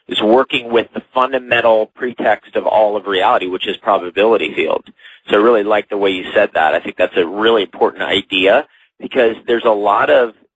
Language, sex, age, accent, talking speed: English, male, 30-49, American, 200 wpm